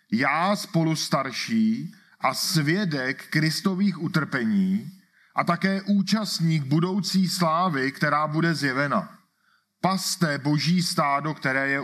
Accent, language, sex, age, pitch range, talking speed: native, Czech, male, 40-59, 140-190 Hz, 95 wpm